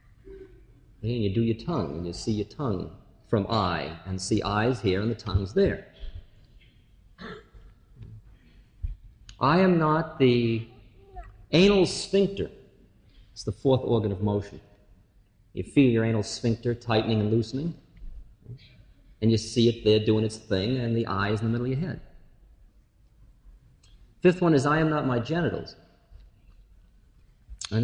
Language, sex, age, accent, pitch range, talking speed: English, male, 50-69, American, 100-130 Hz, 145 wpm